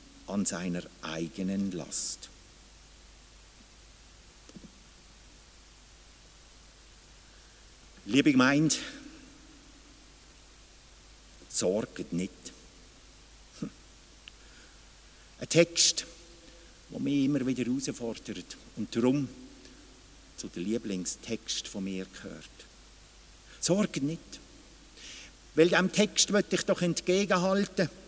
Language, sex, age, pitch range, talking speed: German, male, 50-69, 130-195 Hz, 70 wpm